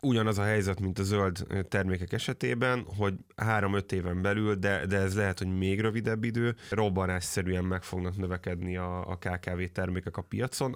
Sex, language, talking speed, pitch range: male, Hungarian, 165 wpm, 95-105 Hz